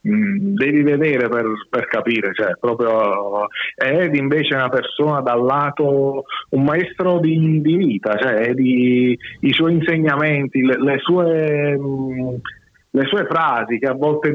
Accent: native